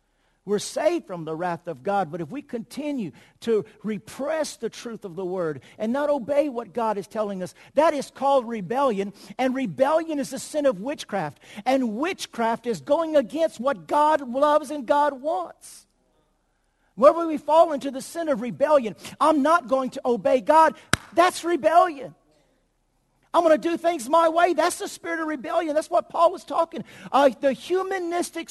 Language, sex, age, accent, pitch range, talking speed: English, male, 50-69, American, 225-315 Hz, 175 wpm